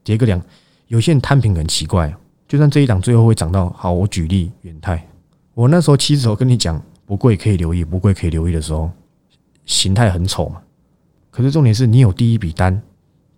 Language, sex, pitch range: Chinese, male, 85-120 Hz